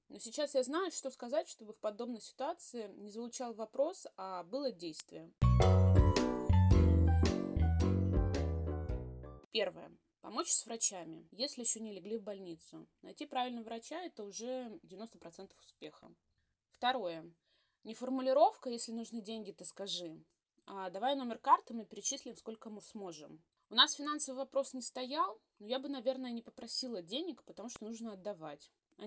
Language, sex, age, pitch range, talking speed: Russian, female, 20-39, 185-255 Hz, 140 wpm